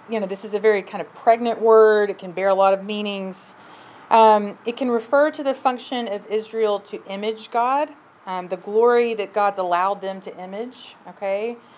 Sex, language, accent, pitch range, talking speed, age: female, English, American, 190-225 Hz, 200 wpm, 30-49